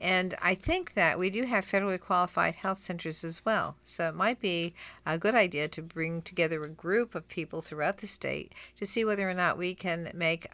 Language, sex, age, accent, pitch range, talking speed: English, female, 50-69, American, 155-185 Hz, 215 wpm